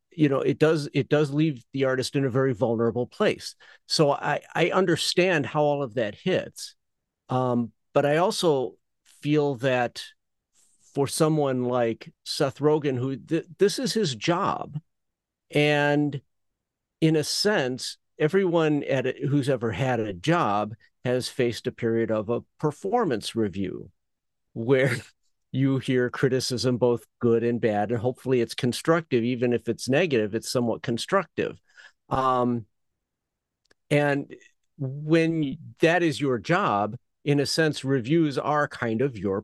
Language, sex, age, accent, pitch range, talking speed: English, male, 50-69, American, 115-150 Hz, 145 wpm